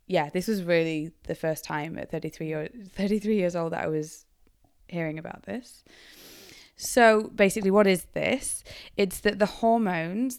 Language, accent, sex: English, British, female